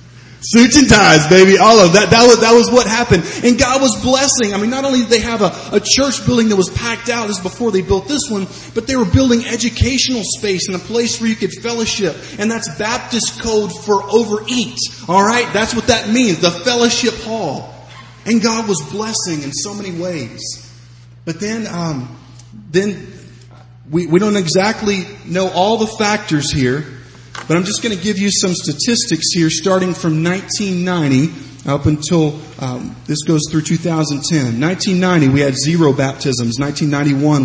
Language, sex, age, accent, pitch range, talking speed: English, male, 30-49, American, 140-205 Hz, 180 wpm